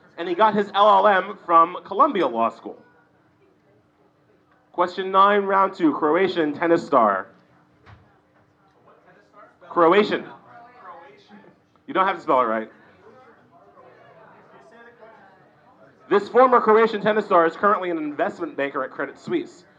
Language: English